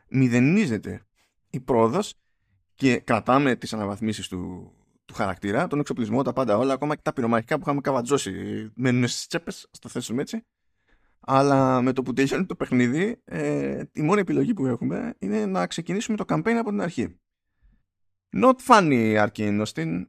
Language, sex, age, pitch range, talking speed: Greek, male, 20-39, 100-145 Hz, 160 wpm